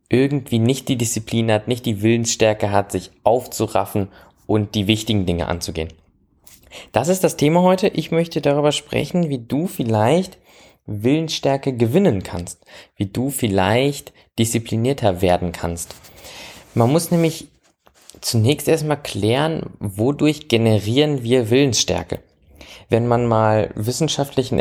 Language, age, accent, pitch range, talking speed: German, 20-39, German, 105-145 Hz, 125 wpm